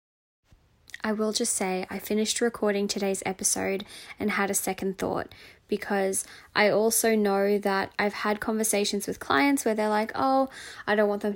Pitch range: 195-220 Hz